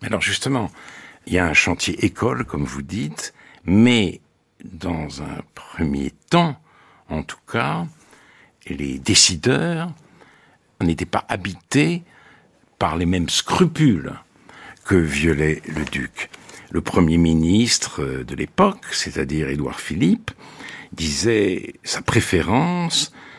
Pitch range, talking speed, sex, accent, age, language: 85-130 Hz, 110 wpm, male, French, 60-79, French